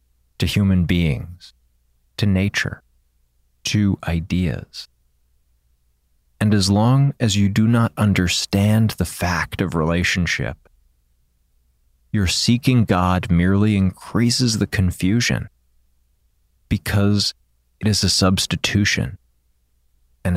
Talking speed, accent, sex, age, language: 95 wpm, American, male, 30-49, English